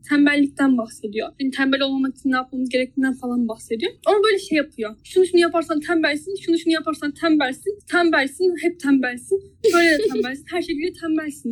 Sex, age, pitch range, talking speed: female, 10-29, 255-335 Hz, 160 wpm